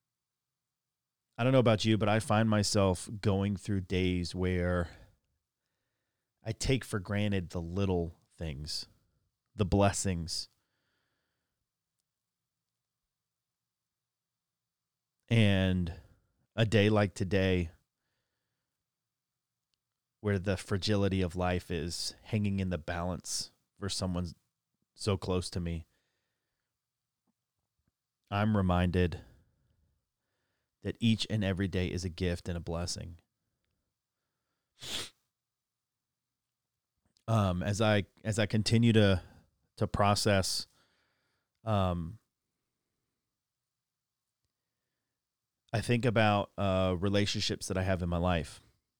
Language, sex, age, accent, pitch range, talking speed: English, male, 30-49, American, 90-115 Hz, 95 wpm